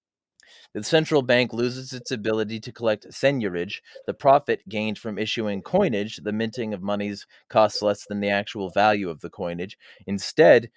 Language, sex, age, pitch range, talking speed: English, male, 30-49, 105-125 Hz, 160 wpm